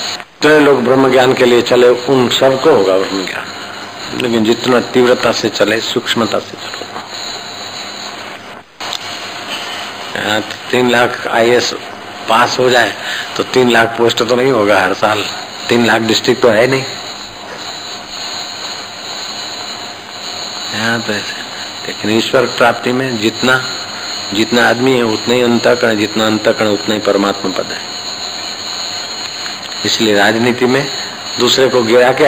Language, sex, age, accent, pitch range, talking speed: Hindi, male, 50-69, native, 105-125 Hz, 125 wpm